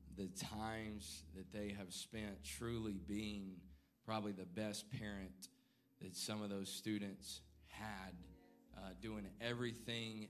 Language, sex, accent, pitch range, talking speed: English, male, American, 95-115 Hz, 120 wpm